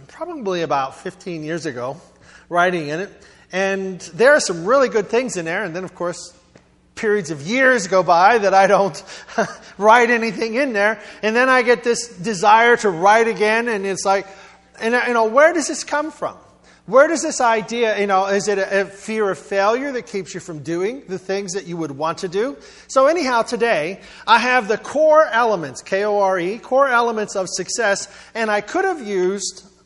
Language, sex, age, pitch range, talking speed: English, male, 30-49, 180-235 Hz, 195 wpm